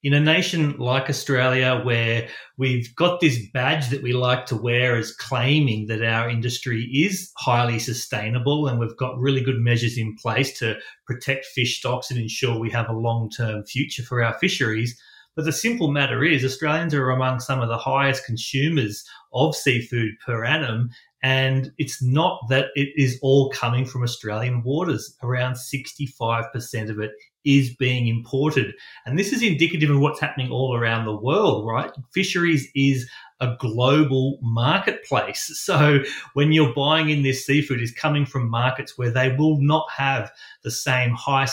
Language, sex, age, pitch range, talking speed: English, male, 30-49, 115-140 Hz, 170 wpm